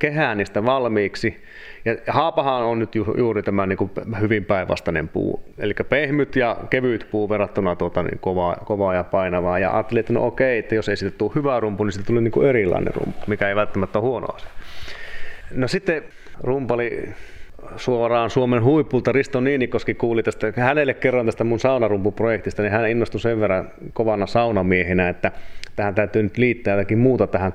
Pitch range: 105-125 Hz